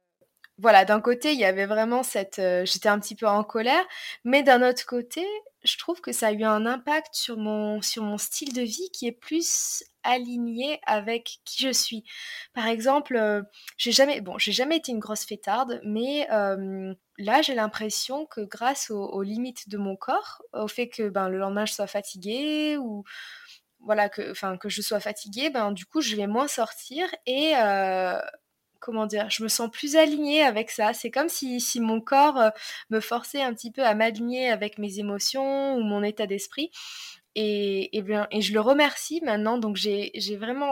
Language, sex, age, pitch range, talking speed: French, female, 20-39, 210-265 Hz, 195 wpm